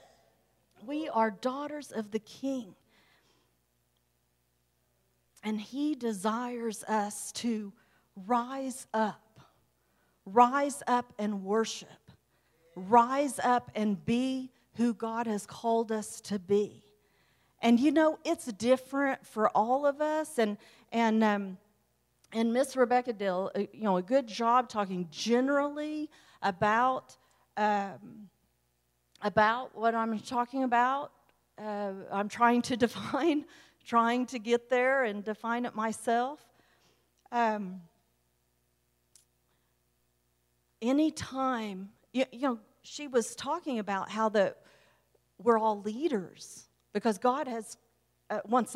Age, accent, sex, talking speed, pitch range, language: 40-59, American, female, 110 wpm, 200-255 Hz, English